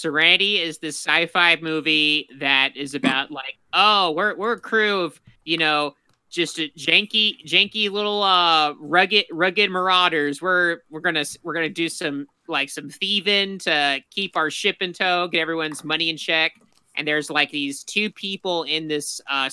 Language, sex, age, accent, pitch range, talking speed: English, male, 30-49, American, 140-175 Hz, 170 wpm